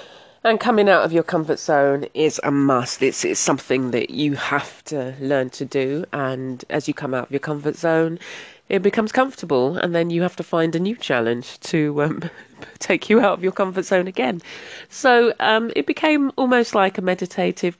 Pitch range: 140-175 Hz